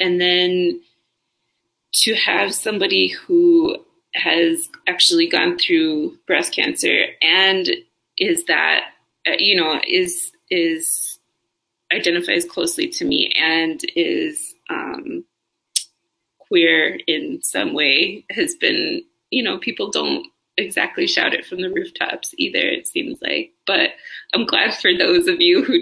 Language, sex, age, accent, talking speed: English, female, 20-39, American, 125 wpm